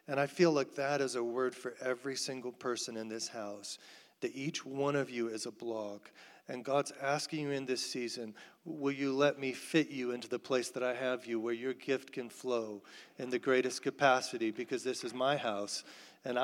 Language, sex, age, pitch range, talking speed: English, male, 40-59, 120-150 Hz, 210 wpm